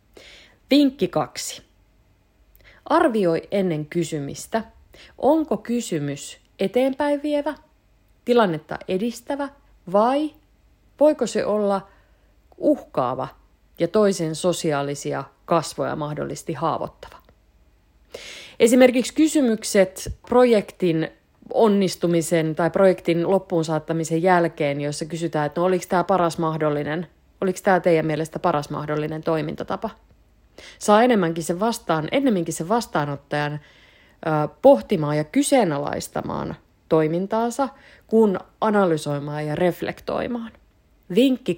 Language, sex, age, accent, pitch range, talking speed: Finnish, female, 30-49, native, 155-225 Hz, 85 wpm